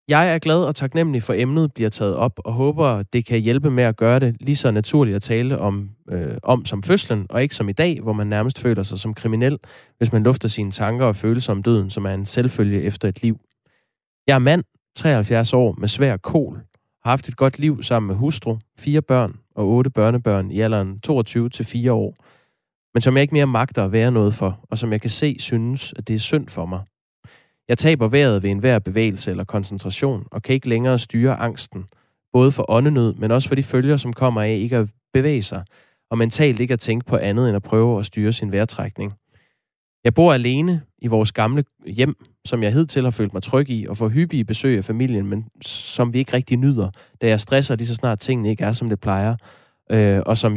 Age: 20-39